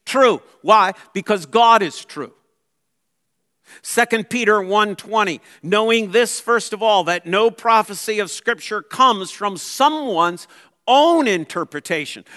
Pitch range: 165-200 Hz